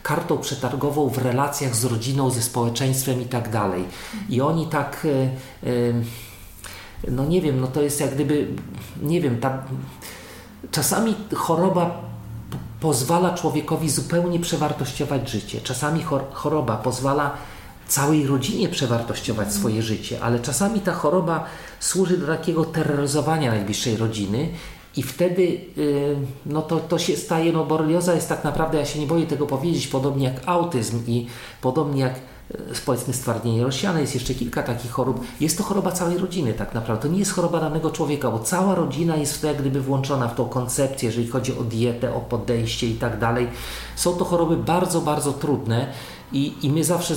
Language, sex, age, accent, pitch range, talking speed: Polish, male, 40-59, native, 125-160 Hz, 160 wpm